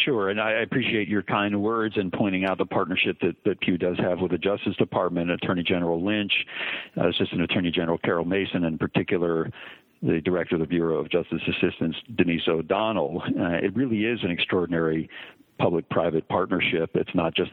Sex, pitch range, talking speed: male, 85-100 Hz, 180 wpm